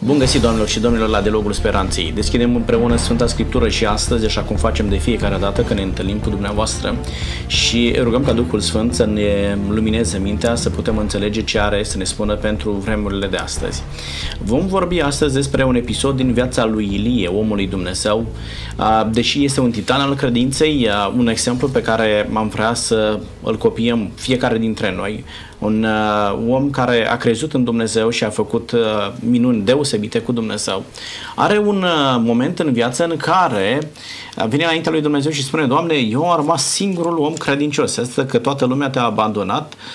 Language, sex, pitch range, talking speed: Romanian, male, 110-145 Hz, 175 wpm